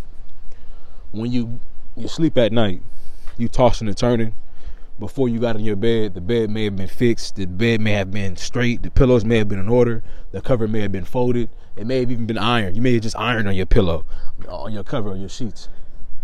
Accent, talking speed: American, 225 wpm